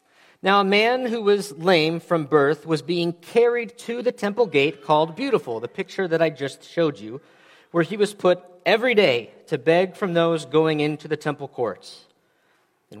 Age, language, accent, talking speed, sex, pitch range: 40-59, English, American, 185 wpm, male, 150-185 Hz